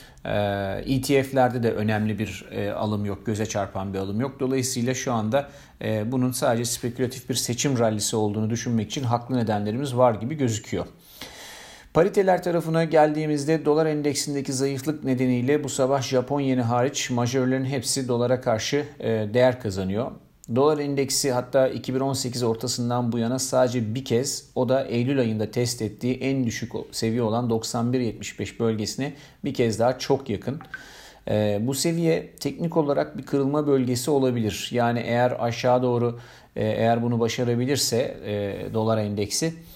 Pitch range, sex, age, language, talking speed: 115-135 Hz, male, 40-59, Turkish, 135 wpm